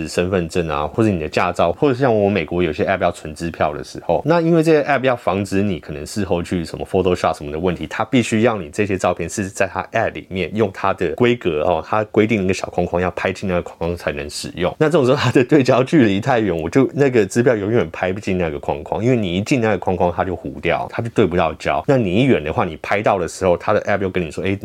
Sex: male